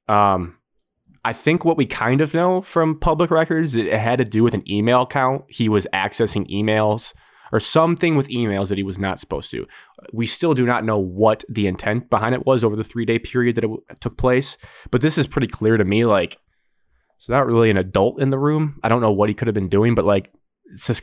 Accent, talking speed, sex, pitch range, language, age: American, 230 wpm, male, 100-125 Hz, English, 20-39